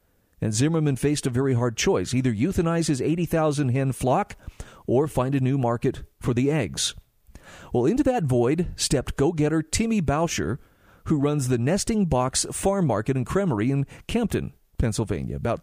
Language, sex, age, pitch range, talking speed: English, male, 40-59, 125-165 Hz, 160 wpm